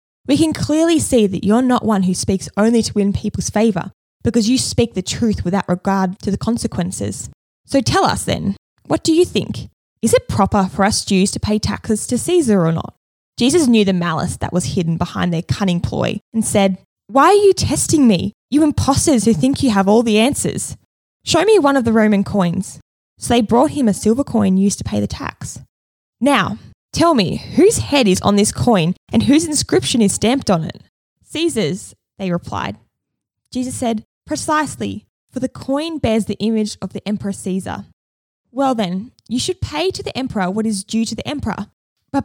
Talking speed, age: 195 wpm, 20-39